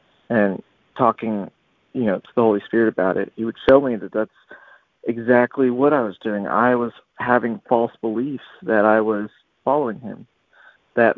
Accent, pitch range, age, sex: American, 110-125 Hz, 40-59, male